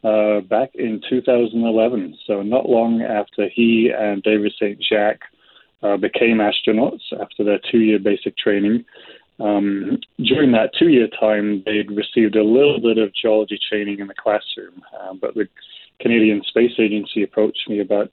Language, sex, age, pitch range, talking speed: English, male, 20-39, 105-115 Hz, 140 wpm